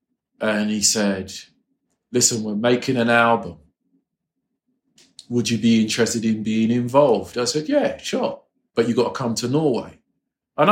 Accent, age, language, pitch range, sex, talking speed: British, 40-59, English, 100-145 Hz, male, 150 wpm